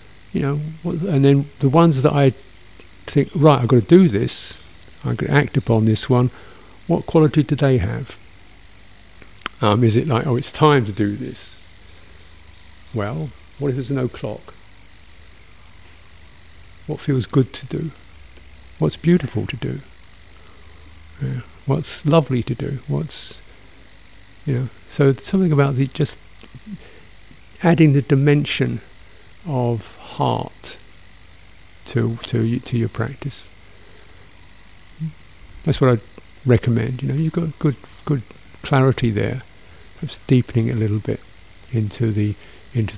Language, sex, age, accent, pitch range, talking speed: English, male, 50-69, British, 95-135 Hz, 130 wpm